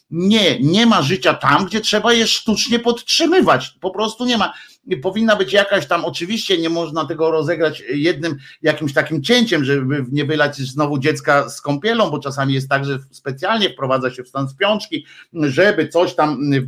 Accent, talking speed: native, 175 wpm